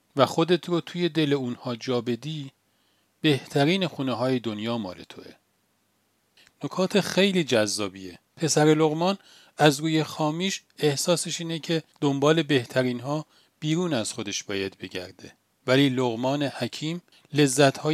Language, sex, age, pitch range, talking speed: Persian, male, 40-59, 120-160 Hz, 120 wpm